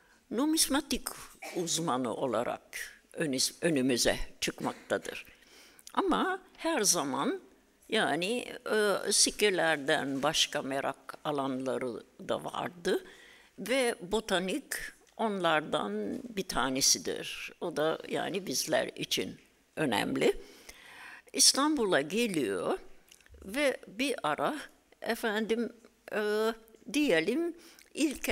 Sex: female